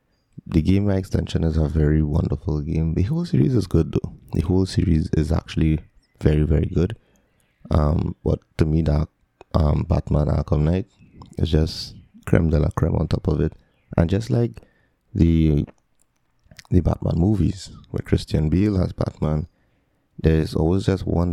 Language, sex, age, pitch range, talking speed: English, male, 30-49, 80-95 Hz, 160 wpm